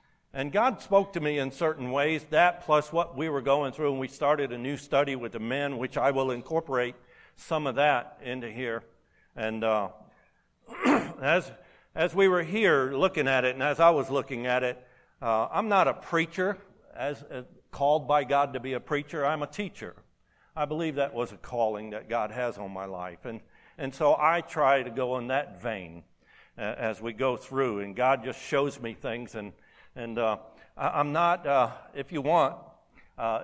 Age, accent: 60-79, American